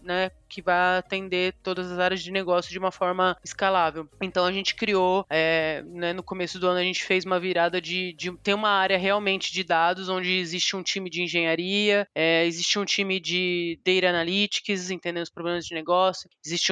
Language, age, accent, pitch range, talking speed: Portuguese, 20-39, Brazilian, 180-210 Hz, 195 wpm